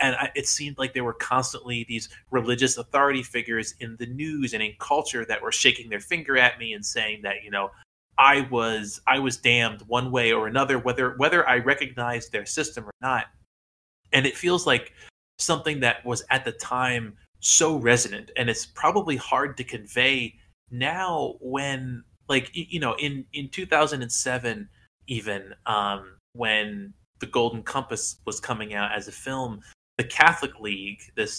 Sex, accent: male, American